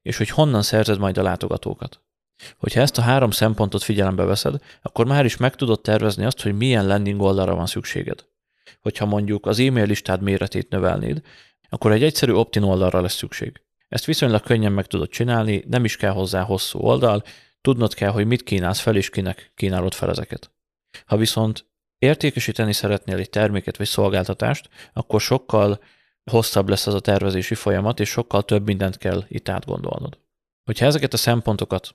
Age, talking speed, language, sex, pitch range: 30-49, 170 wpm, Hungarian, male, 100-115 Hz